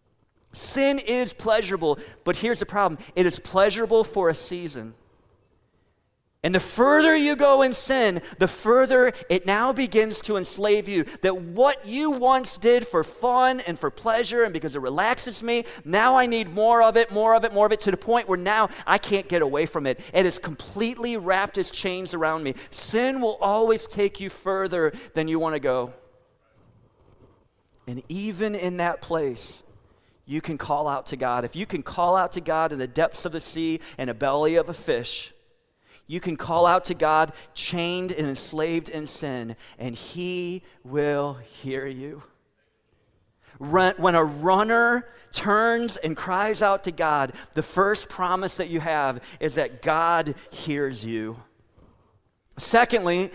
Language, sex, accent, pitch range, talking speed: English, male, American, 145-215 Hz, 170 wpm